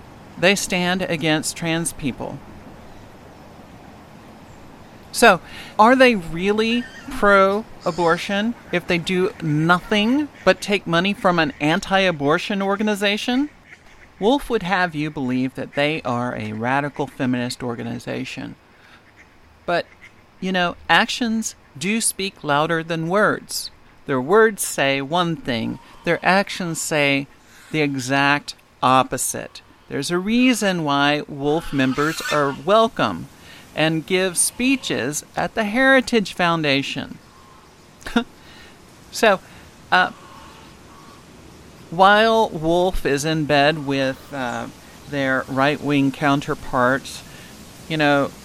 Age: 50-69